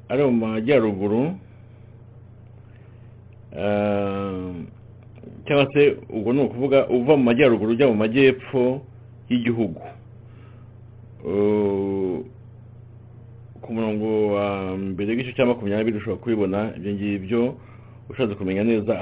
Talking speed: 90 wpm